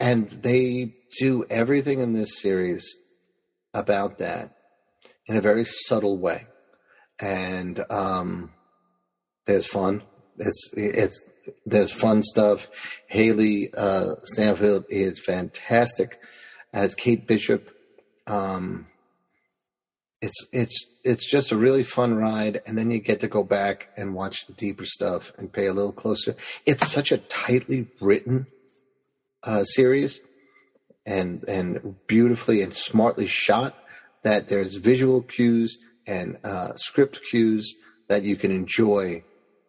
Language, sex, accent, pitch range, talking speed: English, male, American, 100-120 Hz, 125 wpm